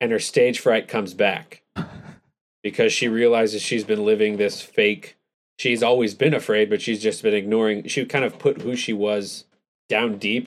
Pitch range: 105-155 Hz